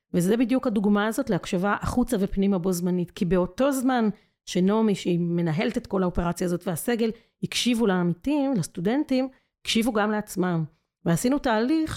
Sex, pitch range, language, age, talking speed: female, 185-235 Hz, Hebrew, 40-59, 140 wpm